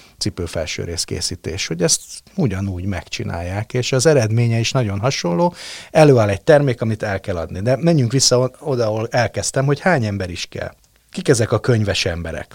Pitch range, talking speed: 95-130 Hz, 170 wpm